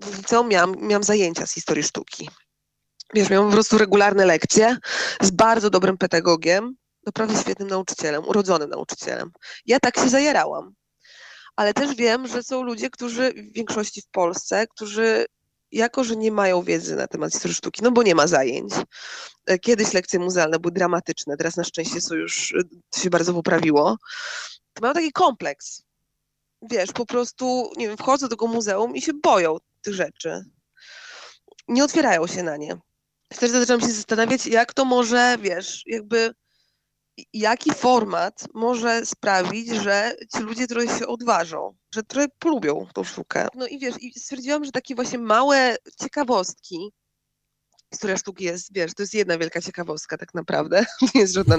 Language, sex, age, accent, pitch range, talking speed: Polish, female, 20-39, native, 190-250 Hz, 160 wpm